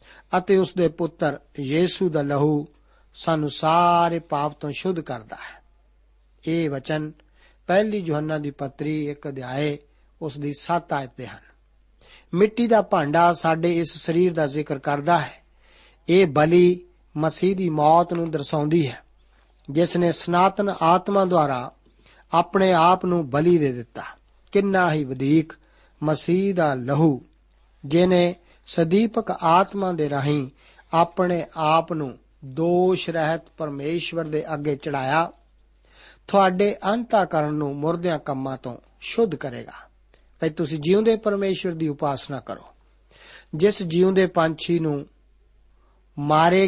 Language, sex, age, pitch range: Punjabi, male, 50-69, 145-180 Hz